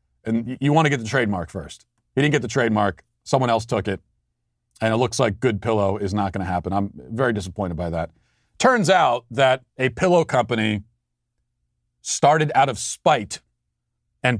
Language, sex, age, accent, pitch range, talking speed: English, male, 40-59, American, 110-140 Hz, 185 wpm